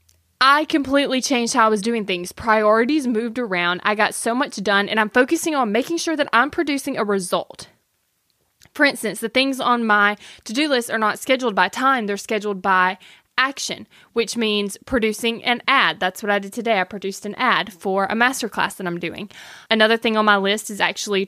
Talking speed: 200 wpm